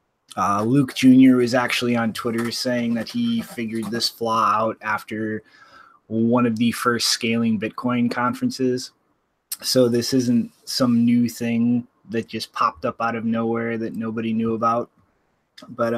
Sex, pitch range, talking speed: male, 115-130 Hz, 150 wpm